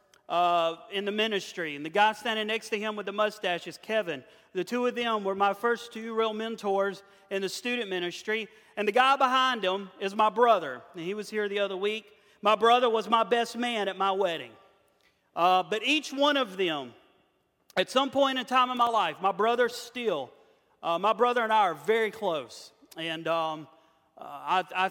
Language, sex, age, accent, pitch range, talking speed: English, male, 40-59, American, 180-230 Hz, 200 wpm